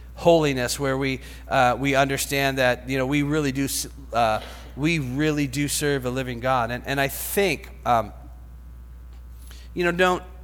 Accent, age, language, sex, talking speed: American, 40-59, English, male, 160 wpm